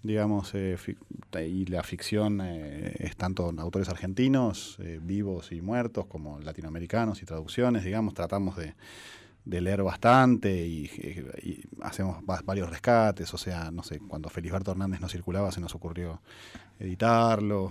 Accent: Argentinian